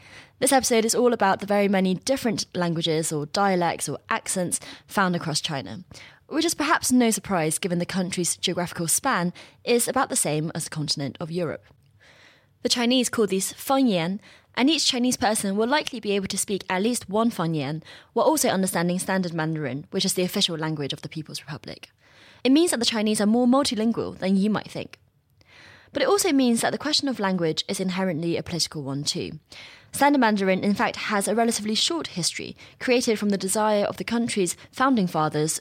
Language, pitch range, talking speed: English, 165-235 Hz, 190 wpm